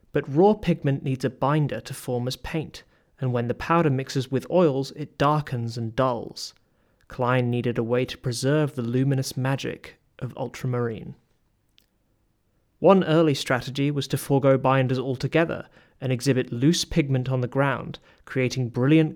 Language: English